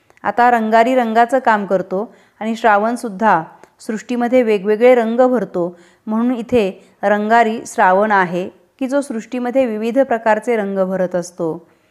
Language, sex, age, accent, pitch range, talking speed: Marathi, female, 30-49, native, 180-235 Hz, 120 wpm